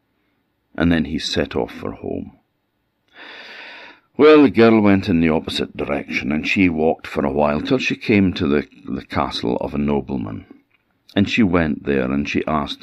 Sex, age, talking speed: male, 60-79, 180 wpm